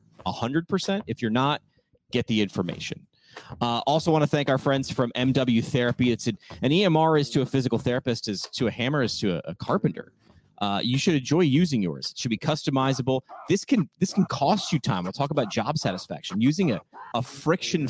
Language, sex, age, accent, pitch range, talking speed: English, male, 30-49, American, 110-145 Hz, 210 wpm